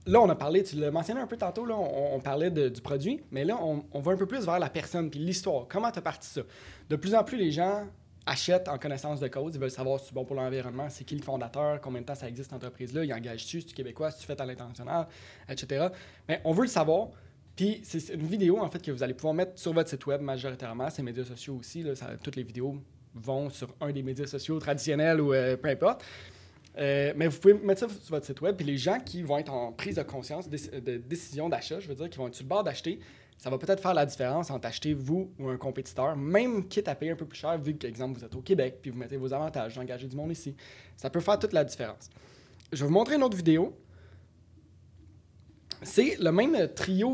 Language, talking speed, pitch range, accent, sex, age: French, 260 wpm, 130-170 Hz, Canadian, male, 20-39